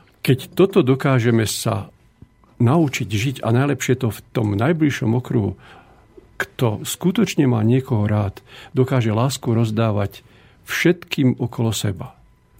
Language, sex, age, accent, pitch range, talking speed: Czech, male, 50-69, native, 110-135 Hz, 115 wpm